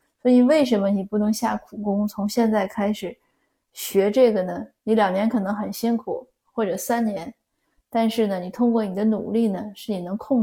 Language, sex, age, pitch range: Chinese, female, 20-39, 200-230 Hz